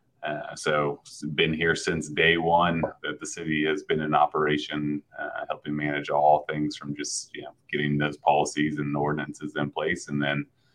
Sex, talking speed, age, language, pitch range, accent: male, 180 wpm, 30-49, English, 75-85 Hz, American